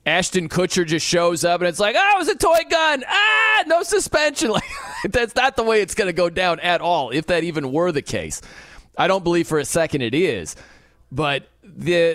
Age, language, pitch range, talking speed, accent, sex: 30-49, English, 160-220 Hz, 220 wpm, American, male